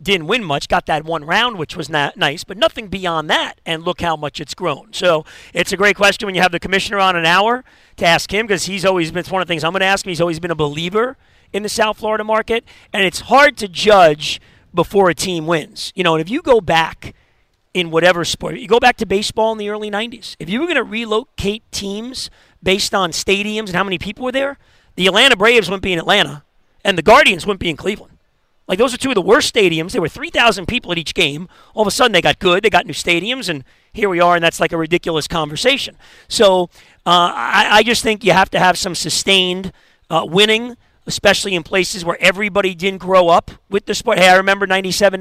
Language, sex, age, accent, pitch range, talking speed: English, male, 40-59, American, 175-215 Hz, 245 wpm